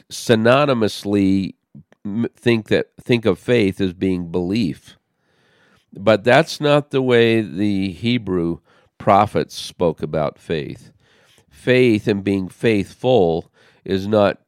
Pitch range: 95-125 Hz